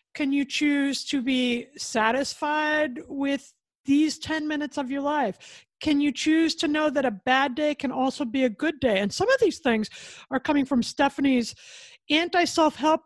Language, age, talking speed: English, 50-69, 175 wpm